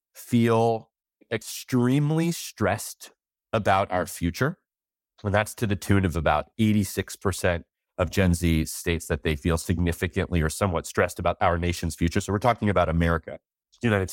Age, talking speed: 30-49, 155 wpm